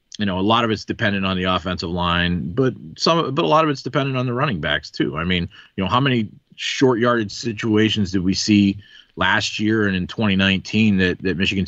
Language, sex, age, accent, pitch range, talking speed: English, male, 30-49, American, 90-115 Hz, 220 wpm